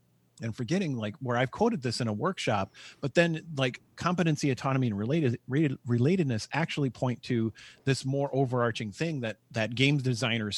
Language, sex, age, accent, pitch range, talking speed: English, male, 40-59, American, 110-140 Hz, 165 wpm